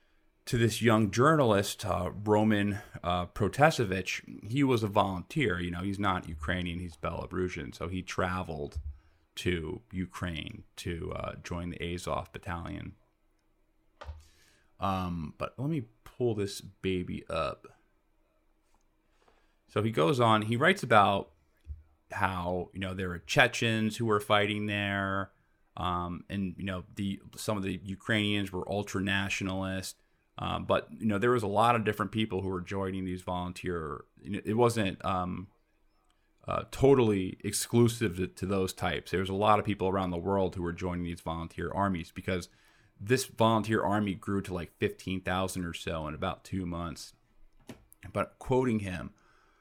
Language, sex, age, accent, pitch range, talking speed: English, male, 30-49, American, 90-105 Hz, 150 wpm